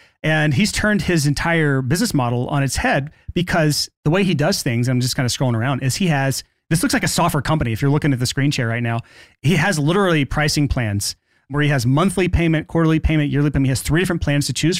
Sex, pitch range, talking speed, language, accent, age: male, 130-165 Hz, 250 wpm, English, American, 30-49